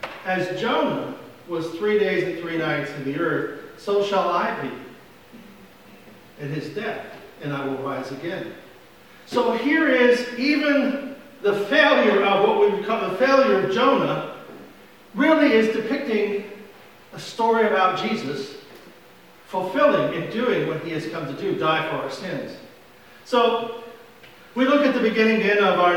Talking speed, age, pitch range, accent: 150 wpm, 40-59, 190-260 Hz, American